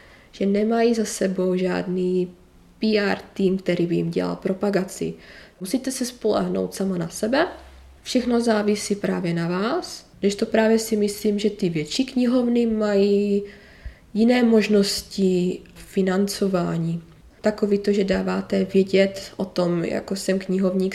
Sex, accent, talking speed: female, native, 130 wpm